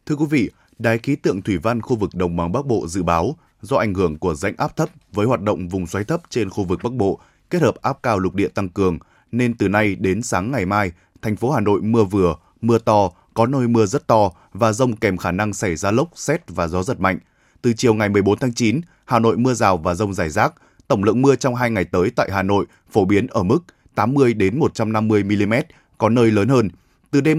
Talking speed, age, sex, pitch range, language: 245 wpm, 20-39, male, 95-125 Hz, Vietnamese